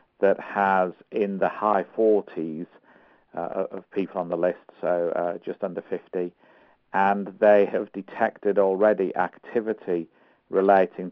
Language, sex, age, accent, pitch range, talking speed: English, male, 50-69, British, 90-100 Hz, 125 wpm